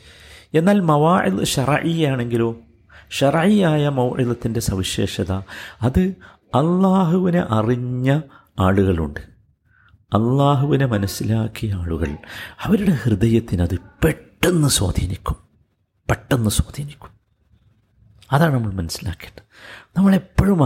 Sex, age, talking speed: male, 50-69, 75 wpm